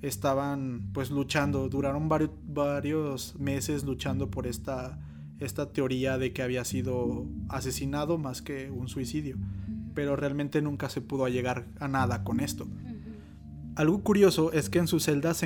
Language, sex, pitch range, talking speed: Spanish, male, 135-160 Hz, 150 wpm